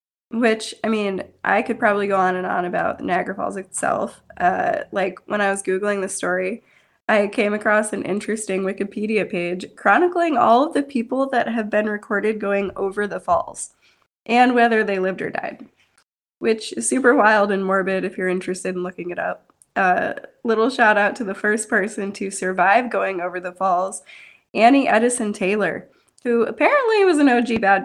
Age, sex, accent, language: 20-39, female, American, English